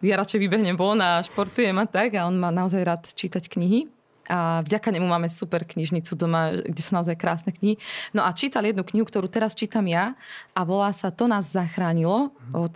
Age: 20-39